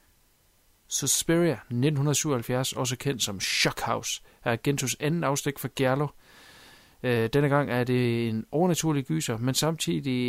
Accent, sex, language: native, male, Danish